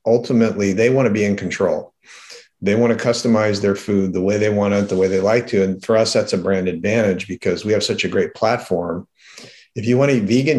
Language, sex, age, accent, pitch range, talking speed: English, male, 40-59, American, 95-115 Hz, 245 wpm